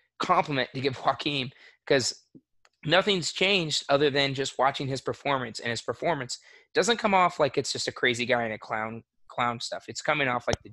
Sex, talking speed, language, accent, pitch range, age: male, 195 wpm, English, American, 110-140 Hz, 20-39